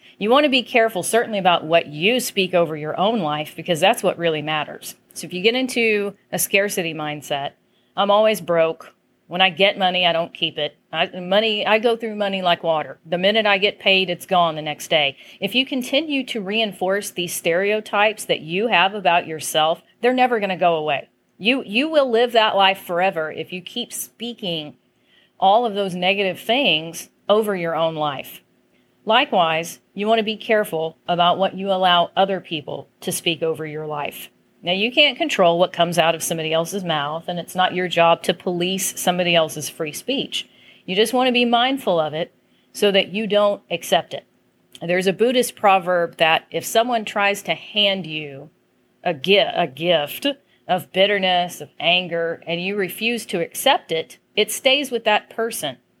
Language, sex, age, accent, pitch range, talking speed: English, female, 40-59, American, 165-210 Hz, 190 wpm